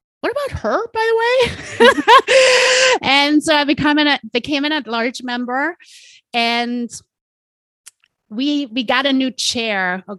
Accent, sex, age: American, female, 30-49